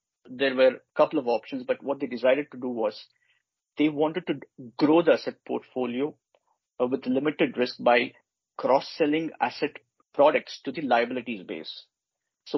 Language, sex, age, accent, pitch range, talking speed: English, male, 50-69, Indian, 125-190 Hz, 155 wpm